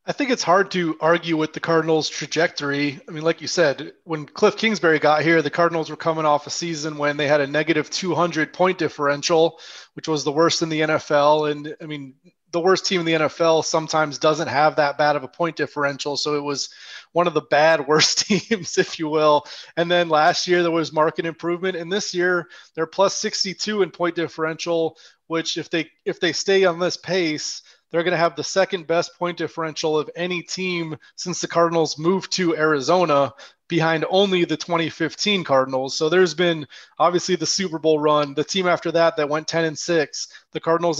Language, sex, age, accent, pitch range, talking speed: English, male, 30-49, American, 155-175 Hz, 200 wpm